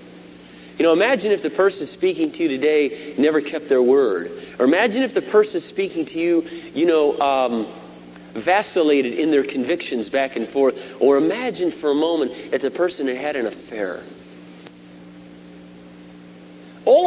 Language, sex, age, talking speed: English, male, 40-59, 155 wpm